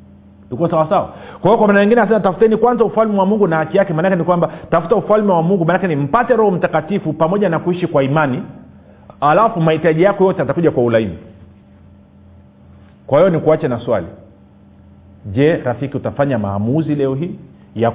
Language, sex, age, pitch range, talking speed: Swahili, male, 40-59, 110-155 Hz, 175 wpm